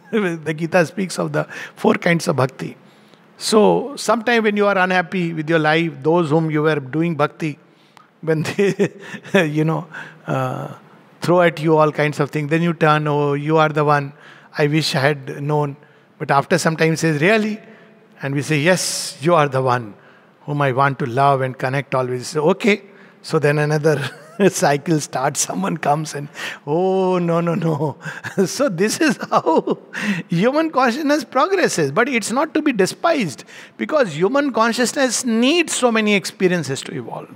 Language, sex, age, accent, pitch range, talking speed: English, male, 60-79, Indian, 155-200 Hz, 170 wpm